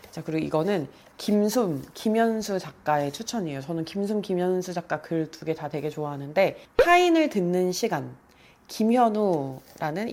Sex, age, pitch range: female, 30-49, 155-210 Hz